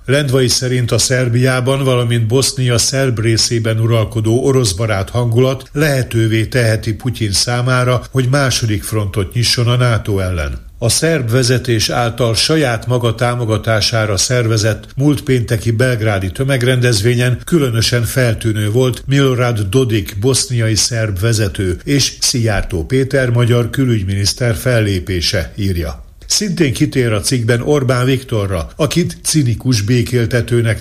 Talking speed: 115 wpm